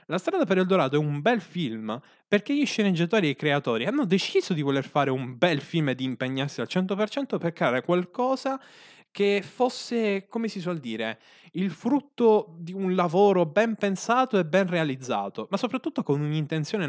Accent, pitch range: native, 135-200 Hz